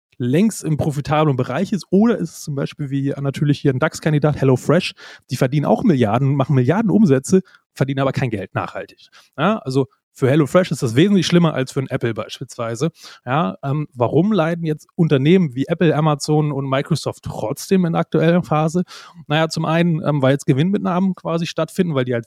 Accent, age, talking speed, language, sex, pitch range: German, 30-49, 185 wpm, German, male, 135-165 Hz